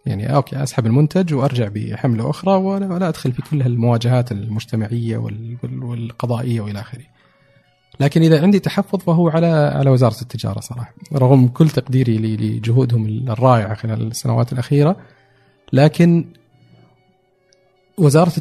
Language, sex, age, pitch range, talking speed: Arabic, male, 40-59, 115-145 Hz, 115 wpm